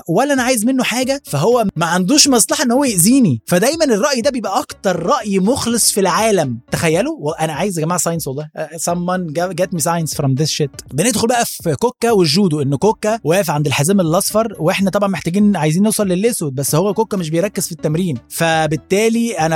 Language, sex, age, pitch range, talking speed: Arabic, male, 20-39, 155-210 Hz, 185 wpm